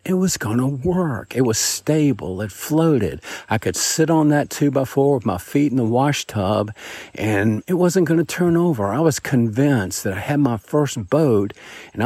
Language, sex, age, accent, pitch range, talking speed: English, male, 50-69, American, 110-155 Hz, 200 wpm